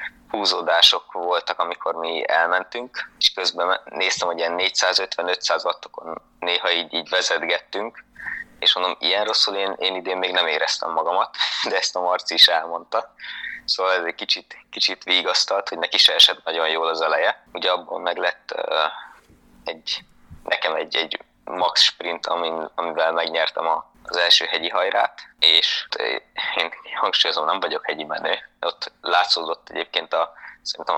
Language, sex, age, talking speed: Hungarian, male, 20-39, 145 wpm